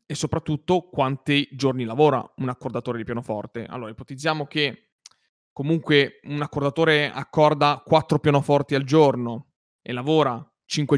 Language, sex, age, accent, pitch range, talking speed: Italian, male, 30-49, native, 130-160 Hz, 125 wpm